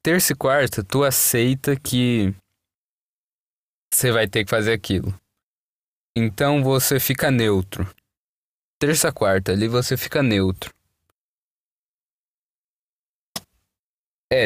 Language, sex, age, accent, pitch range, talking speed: Portuguese, male, 20-39, Brazilian, 105-140 Hz, 95 wpm